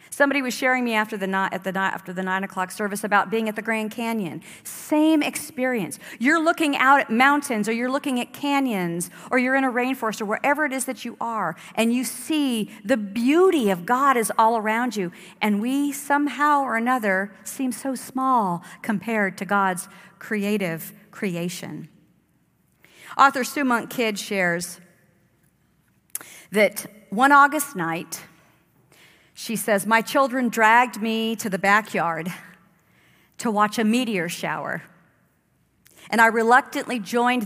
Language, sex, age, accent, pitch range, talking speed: English, female, 50-69, American, 185-250 Hz, 155 wpm